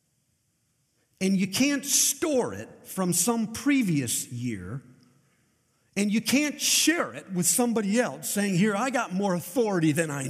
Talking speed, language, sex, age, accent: 145 wpm, English, male, 50-69, American